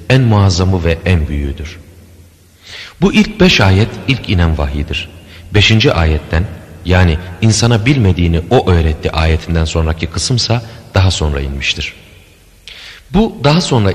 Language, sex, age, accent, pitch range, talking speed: Turkish, male, 40-59, native, 80-100 Hz, 120 wpm